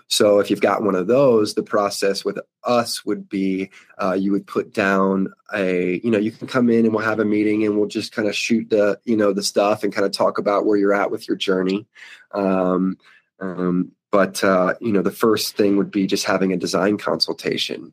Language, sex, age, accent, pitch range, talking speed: English, male, 20-39, American, 95-105 Hz, 230 wpm